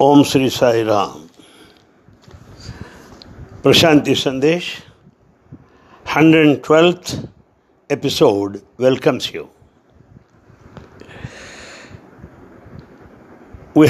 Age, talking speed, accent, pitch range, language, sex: 60-79, 50 wpm, Indian, 125-170 Hz, English, male